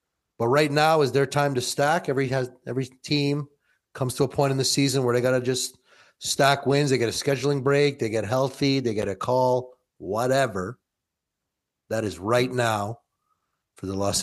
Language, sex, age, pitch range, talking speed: English, male, 30-49, 115-145 Hz, 195 wpm